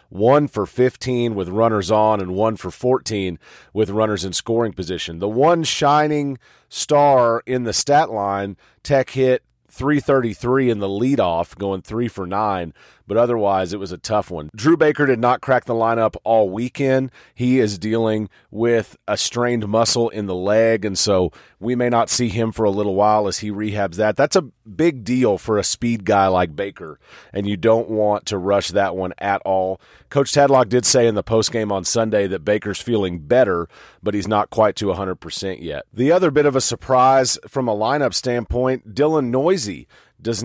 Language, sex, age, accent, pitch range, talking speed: English, male, 40-59, American, 100-130 Hz, 190 wpm